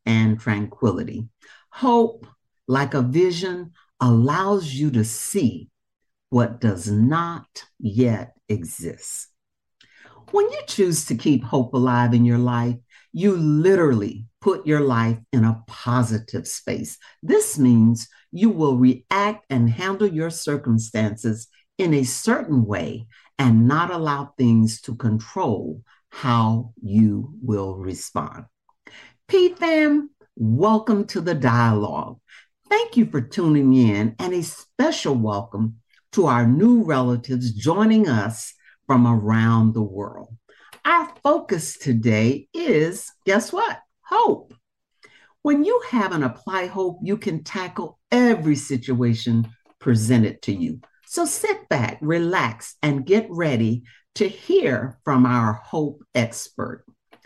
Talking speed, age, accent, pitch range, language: 120 wpm, 60-79, American, 115-190 Hz, English